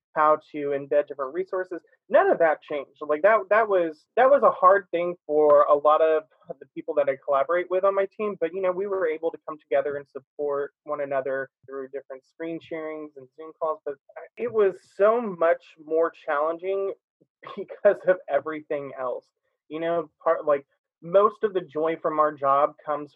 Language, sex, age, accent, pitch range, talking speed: English, male, 20-39, American, 145-170 Hz, 190 wpm